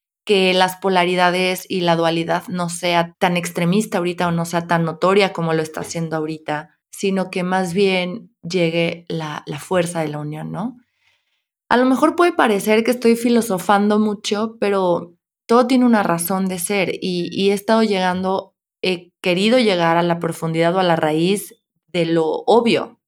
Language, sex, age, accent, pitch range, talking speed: Spanish, female, 20-39, Mexican, 170-210 Hz, 175 wpm